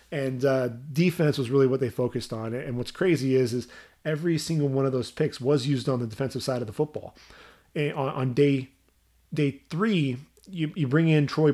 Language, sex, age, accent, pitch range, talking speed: English, male, 30-49, American, 125-145 Hz, 210 wpm